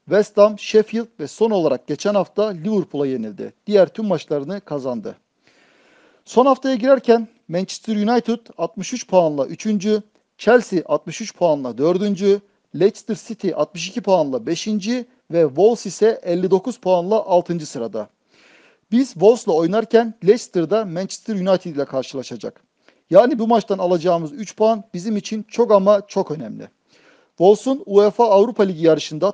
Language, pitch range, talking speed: Turkish, 165-220 Hz, 130 wpm